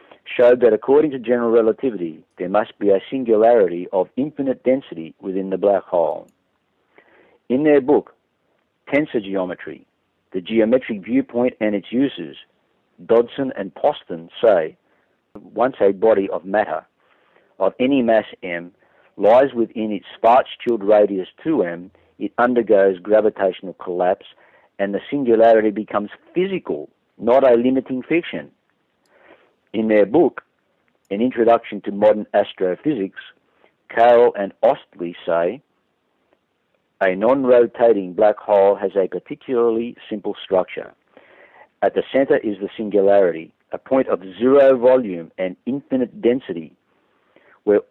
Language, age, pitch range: English, 50-69, 100-130 Hz